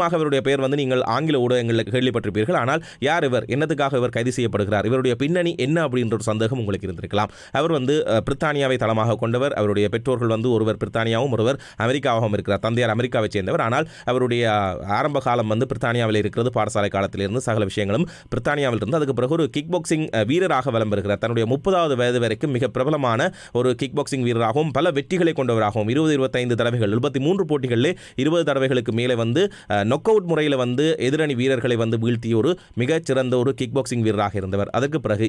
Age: 30-49